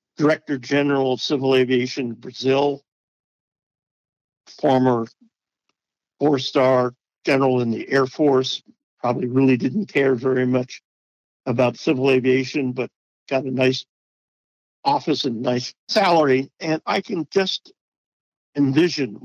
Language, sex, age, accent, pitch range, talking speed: English, male, 60-79, American, 130-150 Hz, 110 wpm